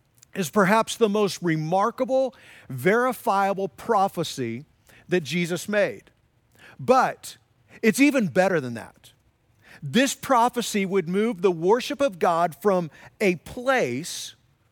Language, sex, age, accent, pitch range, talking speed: English, male, 40-59, American, 160-225 Hz, 110 wpm